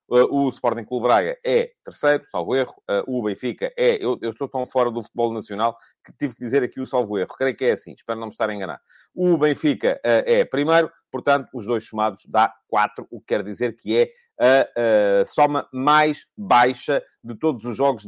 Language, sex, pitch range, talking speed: English, male, 110-145 Hz, 215 wpm